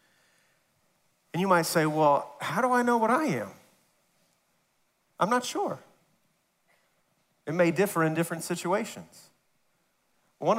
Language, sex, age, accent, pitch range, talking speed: English, male, 40-59, American, 135-165 Hz, 125 wpm